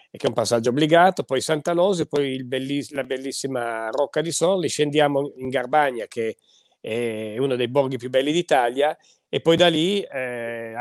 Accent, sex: native, male